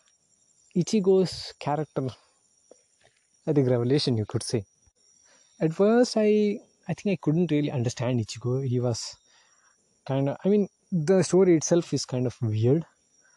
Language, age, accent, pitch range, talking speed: English, 20-39, Indian, 130-180 Hz, 140 wpm